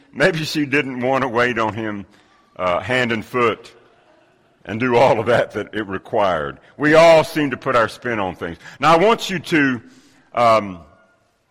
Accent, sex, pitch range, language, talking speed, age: American, male, 110-145 Hz, English, 180 wpm, 60-79